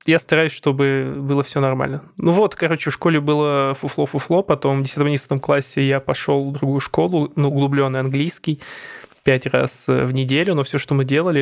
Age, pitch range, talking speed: 20-39, 135-150 Hz, 180 wpm